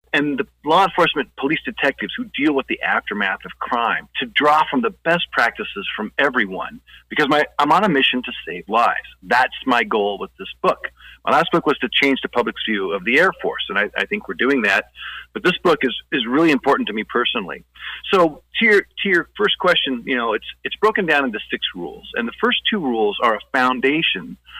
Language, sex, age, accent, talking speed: English, male, 40-59, American, 220 wpm